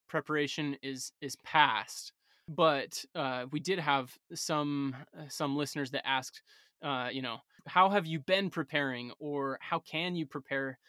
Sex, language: male, English